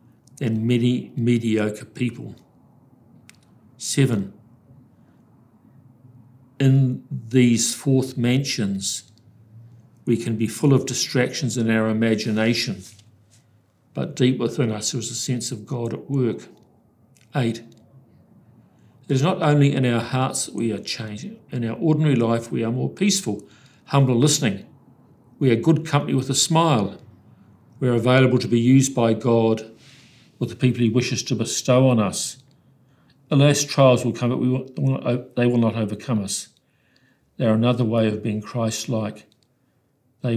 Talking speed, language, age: 140 wpm, English, 50-69